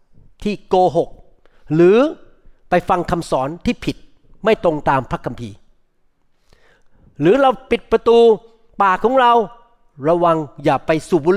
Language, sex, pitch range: Thai, male, 160-225 Hz